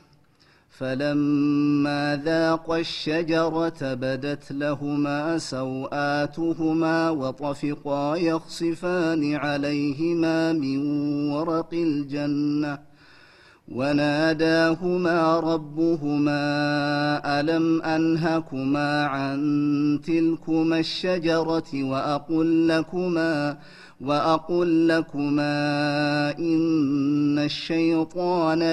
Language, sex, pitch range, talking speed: Amharic, male, 145-165 Hz, 50 wpm